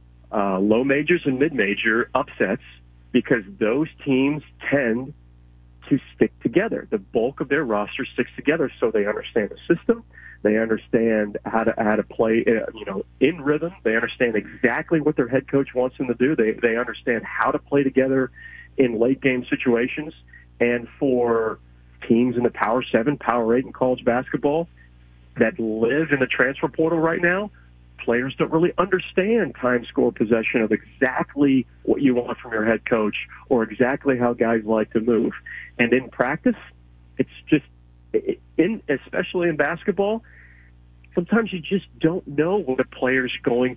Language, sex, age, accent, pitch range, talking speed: English, male, 40-59, American, 105-145 Hz, 165 wpm